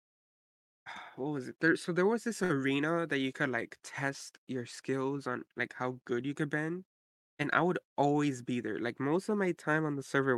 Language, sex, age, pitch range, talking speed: English, male, 20-39, 125-155 Hz, 215 wpm